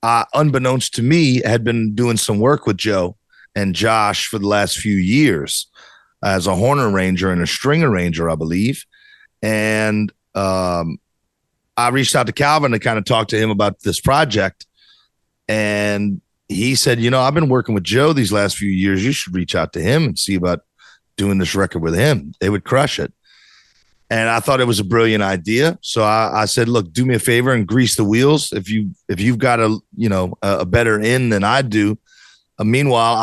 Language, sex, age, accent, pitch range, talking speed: Dutch, male, 40-59, American, 100-120 Hz, 205 wpm